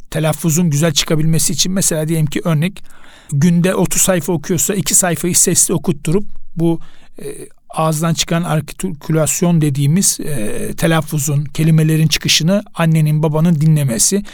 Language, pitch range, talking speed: Turkish, 150-175 Hz, 120 wpm